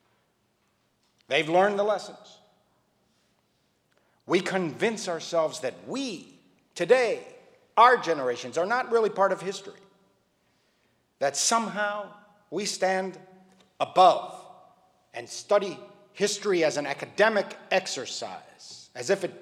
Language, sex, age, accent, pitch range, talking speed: English, male, 50-69, American, 160-220 Hz, 105 wpm